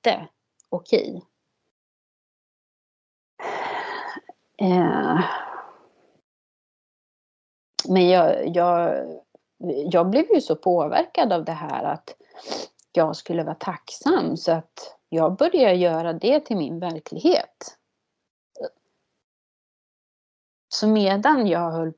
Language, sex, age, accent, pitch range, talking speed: Swedish, female, 30-49, native, 160-195 Hz, 85 wpm